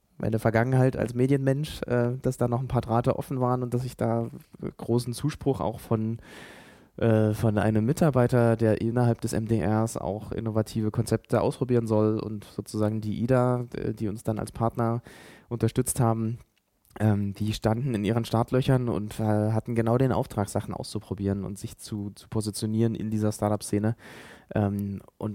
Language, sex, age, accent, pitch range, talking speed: German, male, 20-39, German, 105-120 Hz, 150 wpm